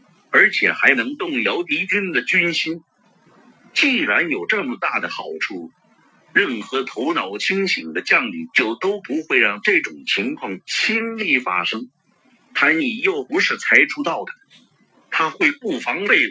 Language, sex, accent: Chinese, male, native